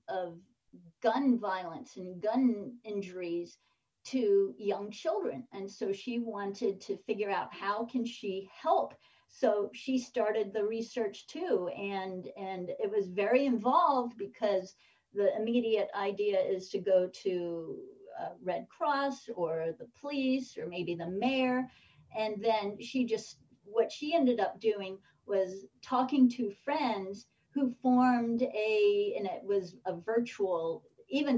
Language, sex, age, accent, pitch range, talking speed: English, female, 40-59, American, 190-245 Hz, 140 wpm